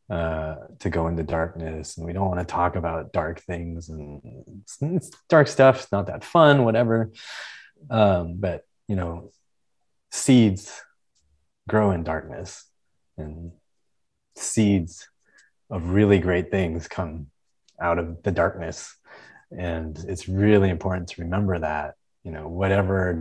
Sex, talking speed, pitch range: male, 135 wpm, 80-100 Hz